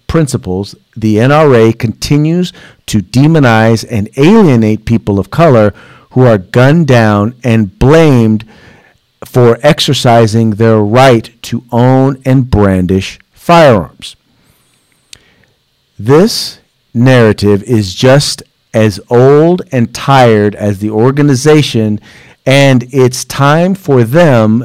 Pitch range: 110-135 Hz